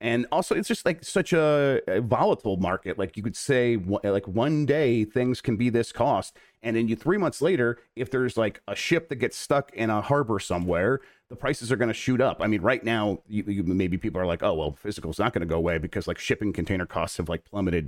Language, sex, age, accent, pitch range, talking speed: English, male, 40-59, American, 95-130 Hz, 240 wpm